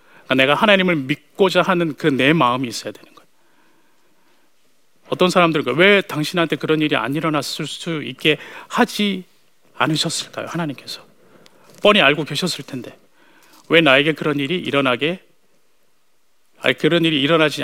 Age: 40-59